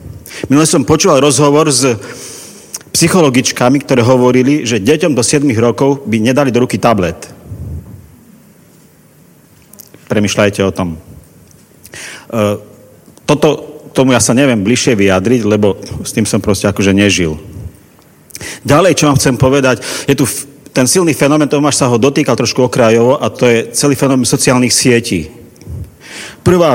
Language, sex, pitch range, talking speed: Slovak, male, 110-140 Hz, 130 wpm